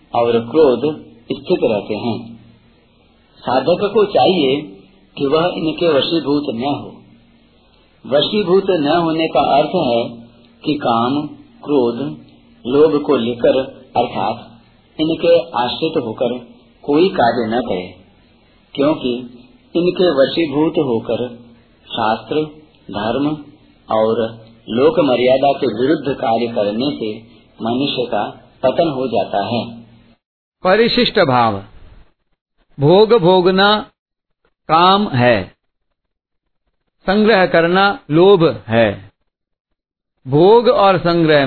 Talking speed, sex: 95 wpm, male